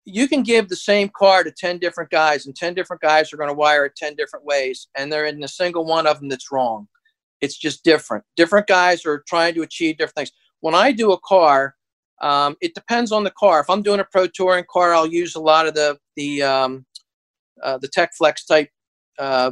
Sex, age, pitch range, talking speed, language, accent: male, 50-69, 150-185 Hz, 225 wpm, English, American